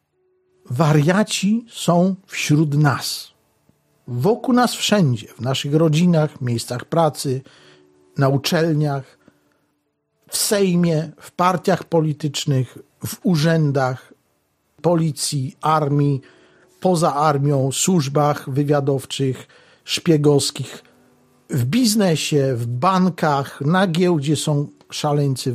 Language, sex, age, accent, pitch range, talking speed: Polish, male, 50-69, native, 135-180 Hz, 85 wpm